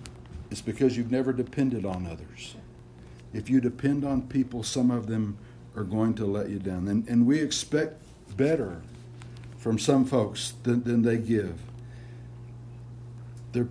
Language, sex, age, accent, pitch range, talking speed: English, male, 60-79, American, 115-140 Hz, 150 wpm